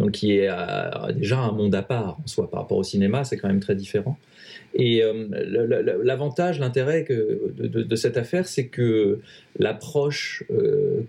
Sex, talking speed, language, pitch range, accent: male, 185 wpm, French, 110-145 Hz, French